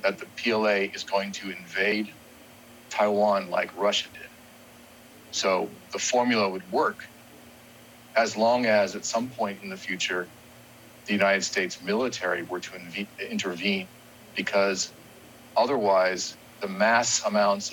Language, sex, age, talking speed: English, male, 40-59, 125 wpm